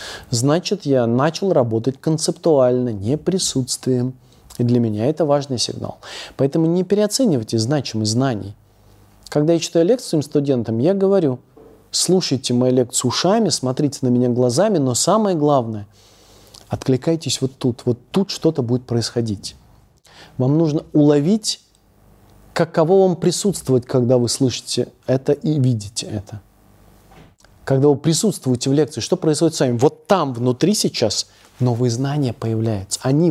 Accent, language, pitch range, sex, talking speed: native, Russian, 115-160 Hz, male, 135 wpm